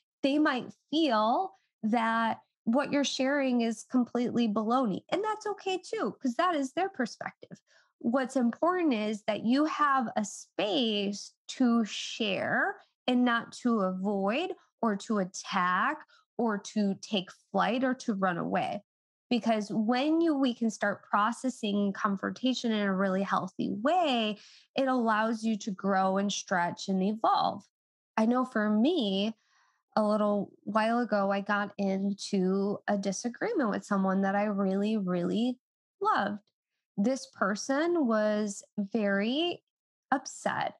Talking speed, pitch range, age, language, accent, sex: 135 wpm, 205-265 Hz, 20-39, English, American, female